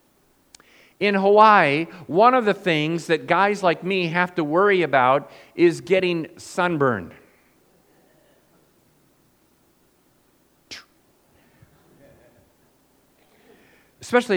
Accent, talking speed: American, 75 wpm